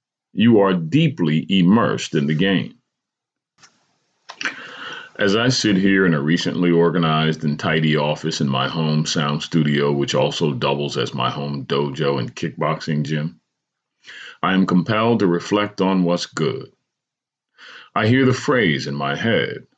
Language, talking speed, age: English, 145 wpm, 40-59